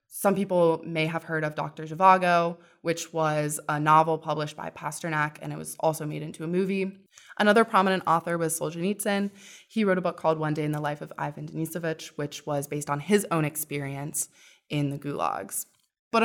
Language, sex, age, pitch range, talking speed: English, female, 20-39, 150-175 Hz, 190 wpm